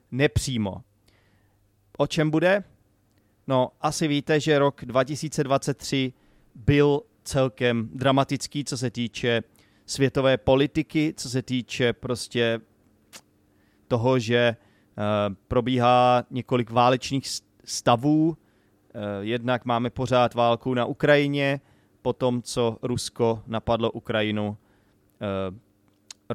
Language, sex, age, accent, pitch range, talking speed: Czech, male, 30-49, native, 105-130 Hz, 95 wpm